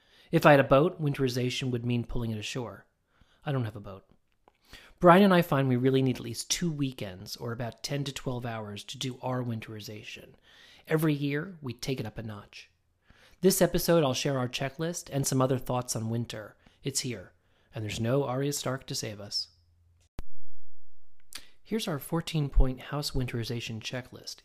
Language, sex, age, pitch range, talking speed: English, male, 30-49, 110-140 Hz, 180 wpm